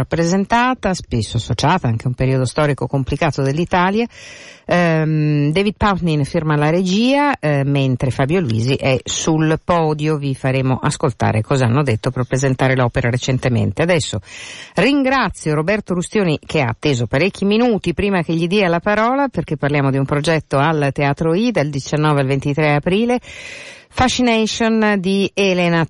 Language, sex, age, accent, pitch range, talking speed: Italian, female, 50-69, native, 130-175 Hz, 150 wpm